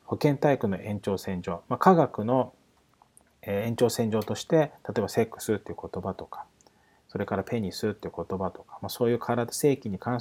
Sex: male